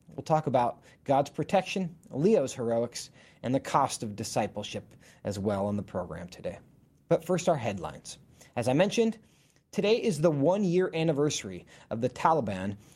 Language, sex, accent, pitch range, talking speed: English, male, American, 120-170 Hz, 155 wpm